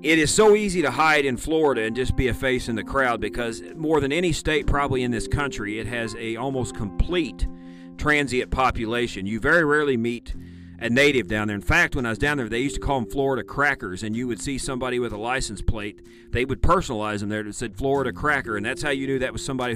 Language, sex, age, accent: English, male, 40-59, American